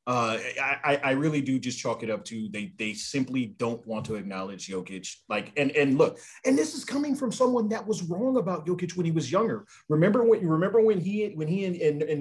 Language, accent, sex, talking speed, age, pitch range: English, American, male, 235 wpm, 30-49, 130-190 Hz